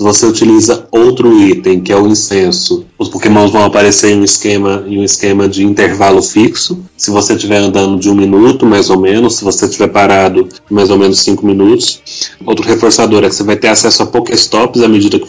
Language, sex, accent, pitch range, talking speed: Portuguese, male, Brazilian, 105-130 Hz, 210 wpm